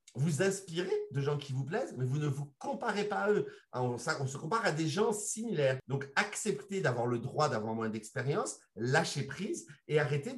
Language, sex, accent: English, male, French